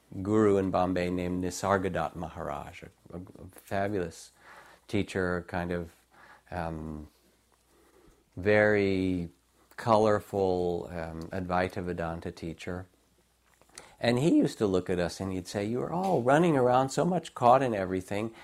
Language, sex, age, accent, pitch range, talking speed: English, male, 50-69, American, 90-120 Hz, 125 wpm